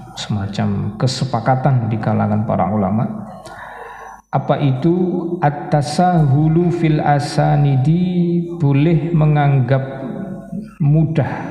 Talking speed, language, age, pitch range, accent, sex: 75 wpm, Indonesian, 50-69, 120-160 Hz, native, male